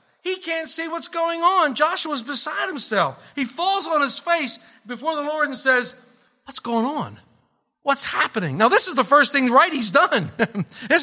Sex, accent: male, American